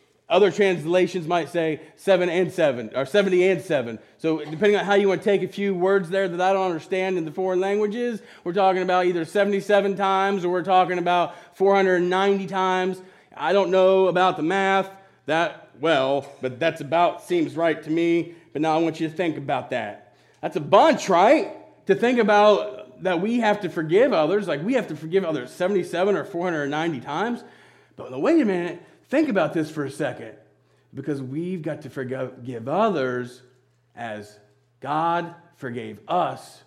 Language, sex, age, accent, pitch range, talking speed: English, male, 30-49, American, 150-195 Hz, 180 wpm